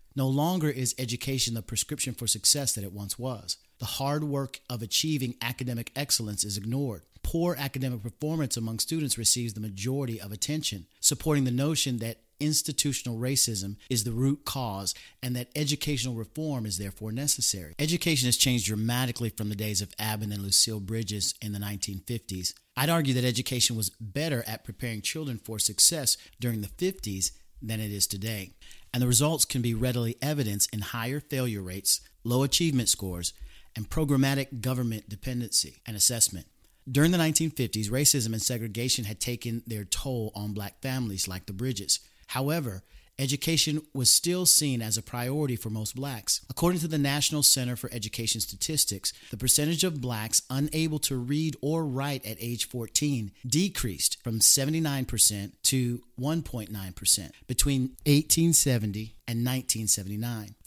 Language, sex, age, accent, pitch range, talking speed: English, male, 40-59, American, 110-140 Hz, 155 wpm